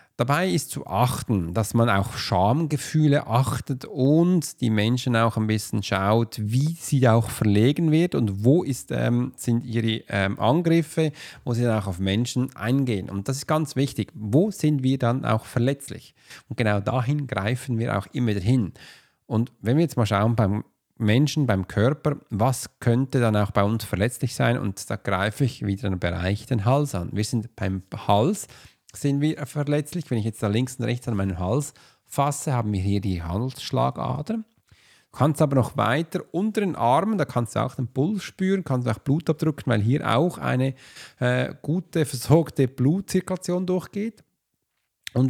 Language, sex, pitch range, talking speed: German, male, 110-145 Hz, 180 wpm